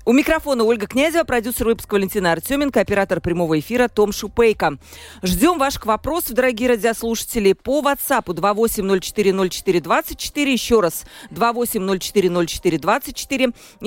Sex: female